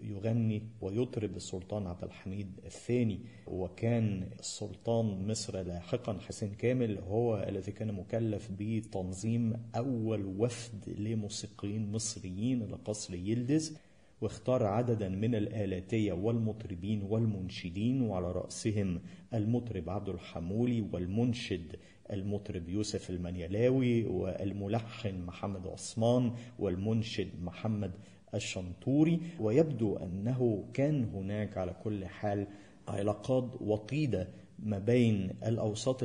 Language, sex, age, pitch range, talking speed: Malay, male, 50-69, 100-115 Hz, 95 wpm